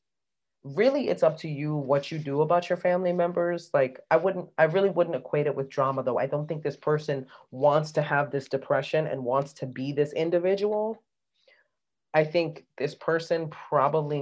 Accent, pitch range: American, 135-165 Hz